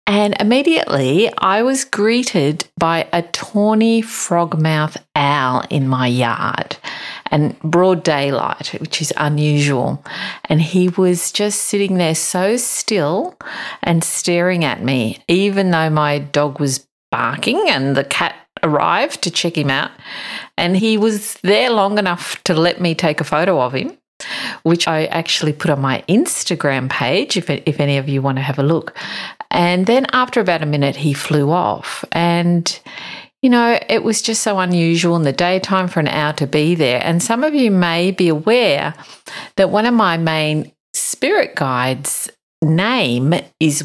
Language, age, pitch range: English, 50-69, 150-195 Hz